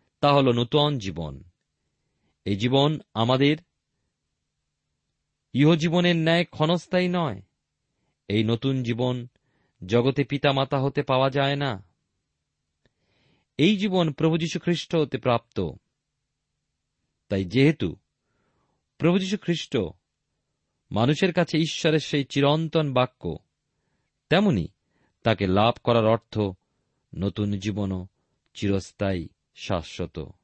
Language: Bengali